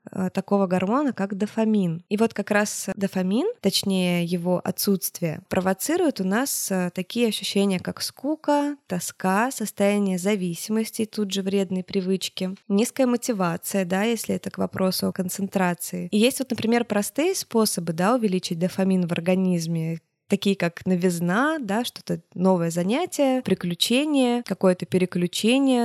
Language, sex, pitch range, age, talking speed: Russian, female, 180-220 Hz, 20-39, 130 wpm